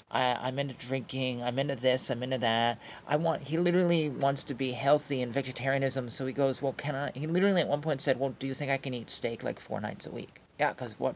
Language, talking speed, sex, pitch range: English, 255 wpm, male, 130-165 Hz